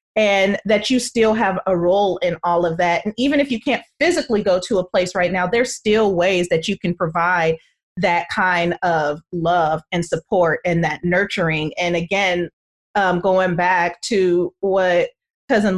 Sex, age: female, 30-49